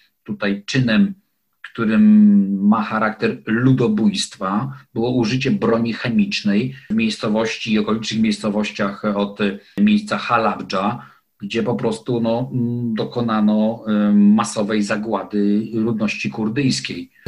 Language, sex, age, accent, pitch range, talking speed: Polish, male, 40-59, native, 105-130 Hz, 90 wpm